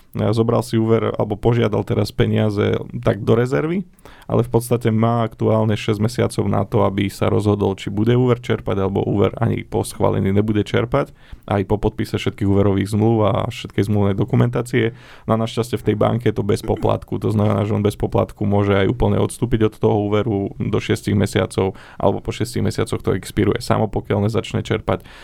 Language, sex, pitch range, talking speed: Slovak, male, 100-115 Hz, 195 wpm